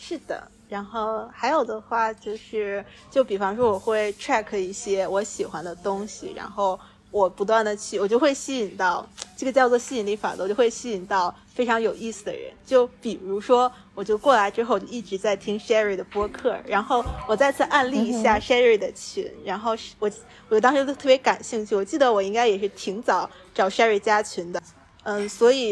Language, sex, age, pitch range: Chinese, female, 20-39, 195-235 Hz